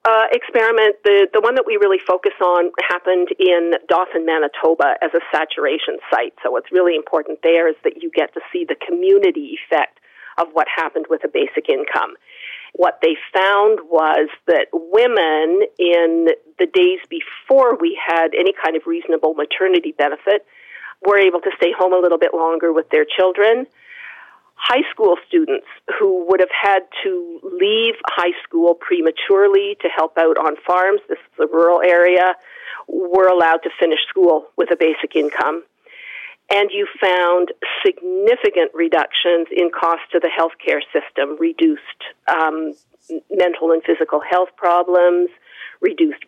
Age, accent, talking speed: 40-59, American, 155 wpm